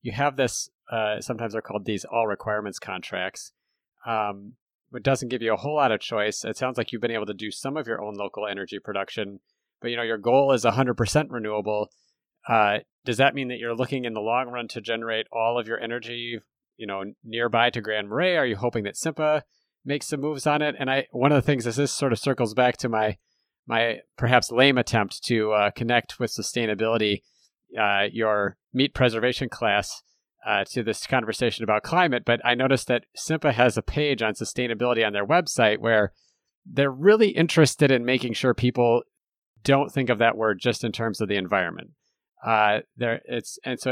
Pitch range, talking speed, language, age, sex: 110-130 Hz, 205 wpm, English, 30-49, male